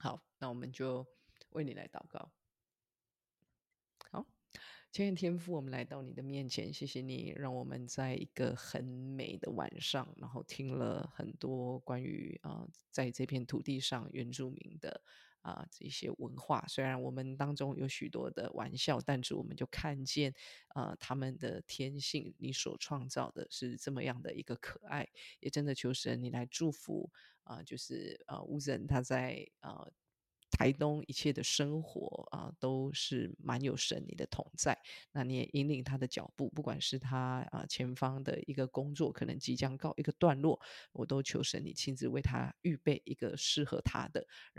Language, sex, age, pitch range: Chinese, female, 20-39, 130-155 Hz